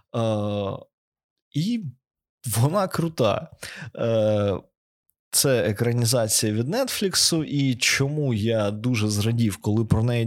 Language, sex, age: Ukrainian, male, 20-39